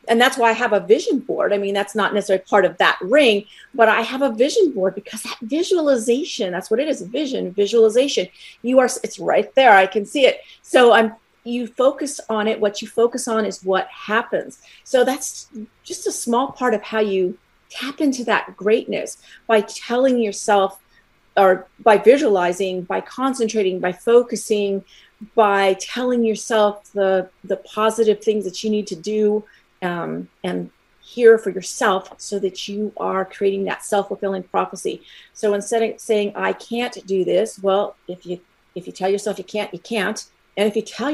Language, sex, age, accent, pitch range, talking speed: English, female, 40-59, American, 195-235 Hz, 185 wpm